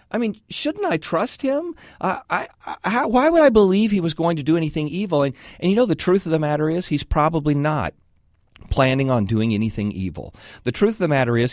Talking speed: 235 wpm